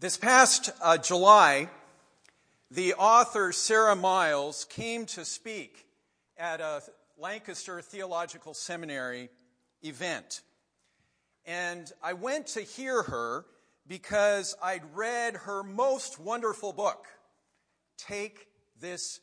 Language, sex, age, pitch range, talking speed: English, male, 50-69, 180-235 Hz, 100 wpm